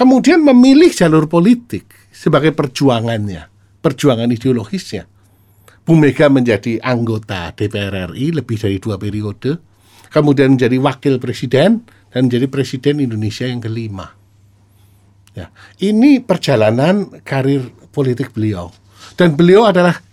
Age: 50-69